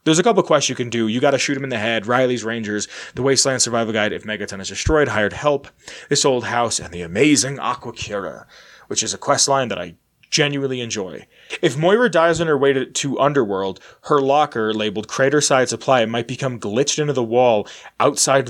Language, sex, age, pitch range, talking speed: English, male, 20-39, 115-145 Hz, 210 wpm